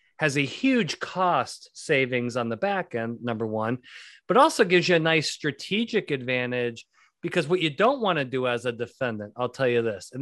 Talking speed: 195 wpm